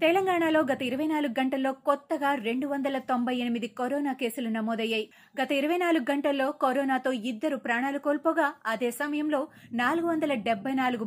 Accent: native